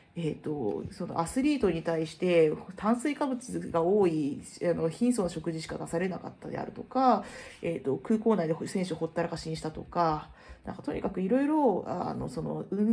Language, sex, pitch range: Japanese, female, 165-240 Hz